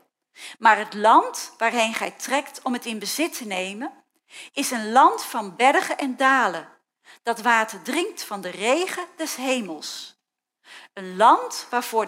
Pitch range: 230-345 Hz